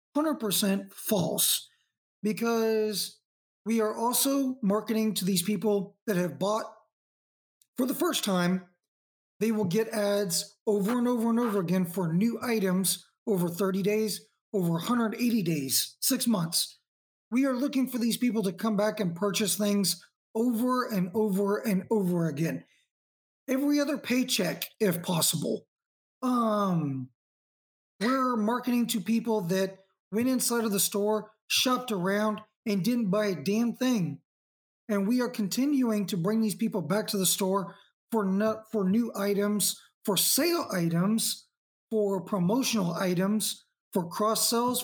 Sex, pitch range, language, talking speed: male, 190-230 Hz, English, 140 wpm